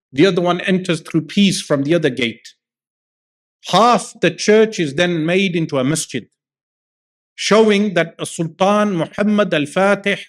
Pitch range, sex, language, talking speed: 155-195 Hz, male, English, 145 wpm